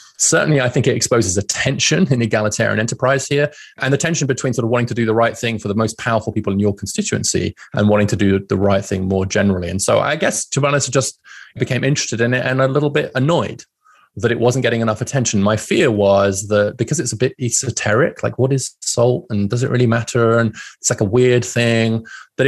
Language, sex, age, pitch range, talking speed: English, male, 20-39, 100-125 Hz, 240 wpm